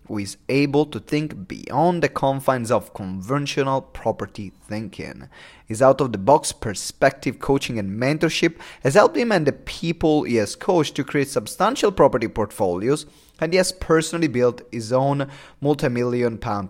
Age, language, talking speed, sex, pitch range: 30-49, English, 145 wpm, male, 110-150 Hz